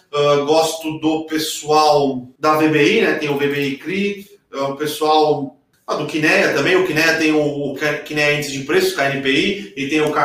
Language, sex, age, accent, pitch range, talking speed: Portuguese, male, 30-49, Brazilian, 140-155 Hz, 180 wpm